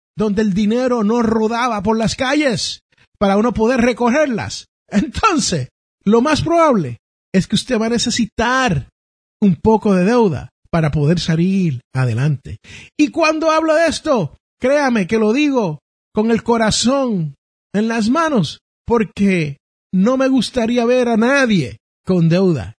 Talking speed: 140 wpm